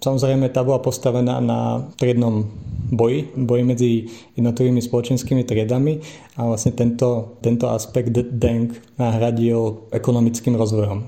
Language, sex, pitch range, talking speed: Slovak, male, 115-125 Hz, 115 wpm